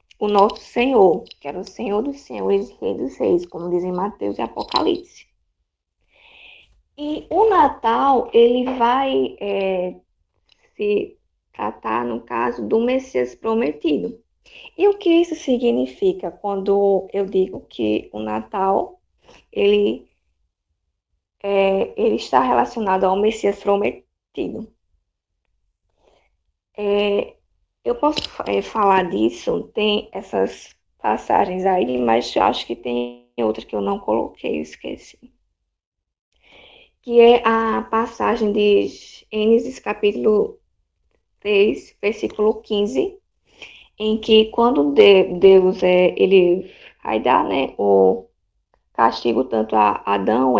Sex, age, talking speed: female, 10-29, 110 wpm